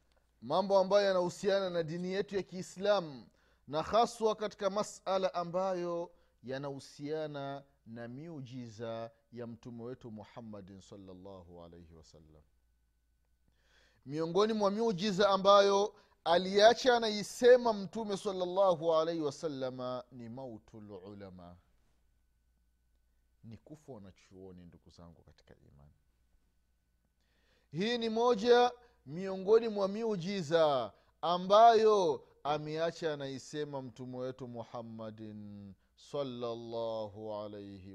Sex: male